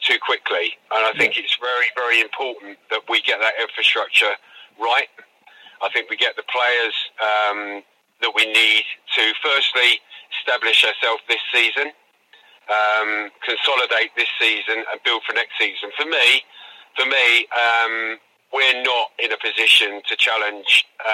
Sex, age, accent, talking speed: male, 30-49, British, 150 wpm